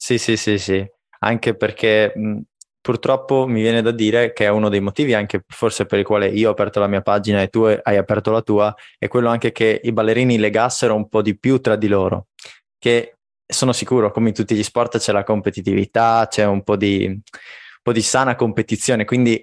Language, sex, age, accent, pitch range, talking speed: Italian, male, 20-39, native, 105-120 Hz, 215 wpm